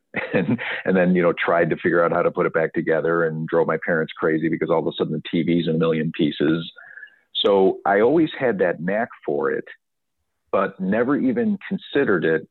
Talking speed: 210 wpm